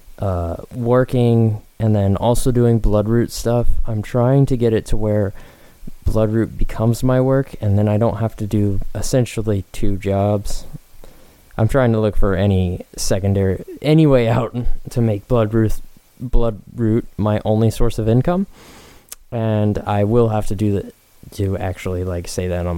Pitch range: 100-120 Hz